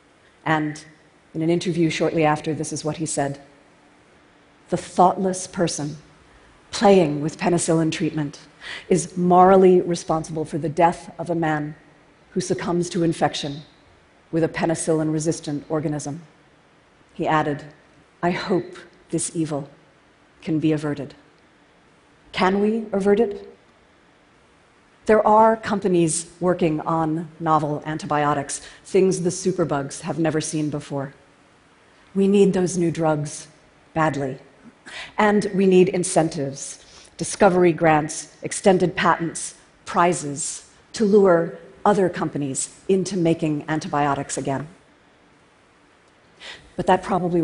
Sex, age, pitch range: female, 40-59, 150-180 Hz